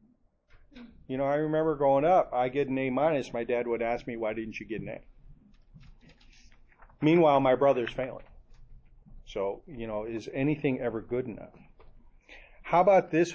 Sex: male